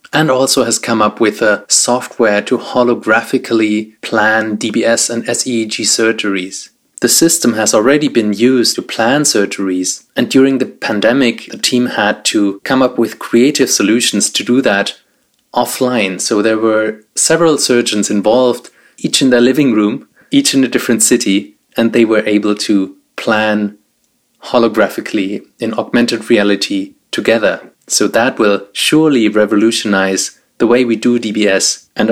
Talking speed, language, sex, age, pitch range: 150 wpm, English, male, 30-49, 105-125 Hz